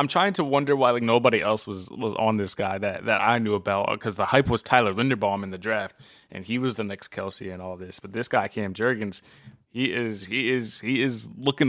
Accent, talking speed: American, 245 wpm